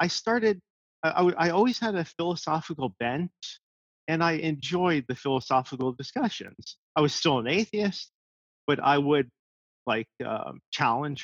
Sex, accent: male, American